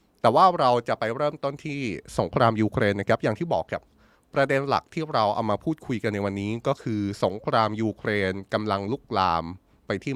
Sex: male